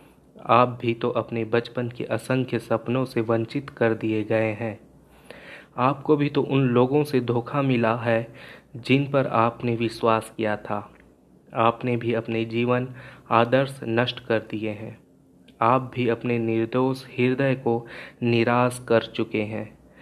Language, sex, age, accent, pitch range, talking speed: Hindi, male, 30-49, native, 115-130 Hz, 145 wpm